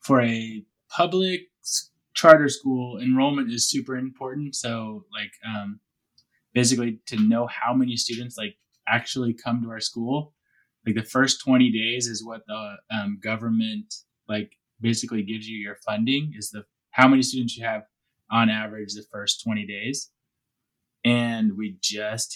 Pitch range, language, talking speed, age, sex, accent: 110-135 Hz, English, 150 wpm, 20-39, male, American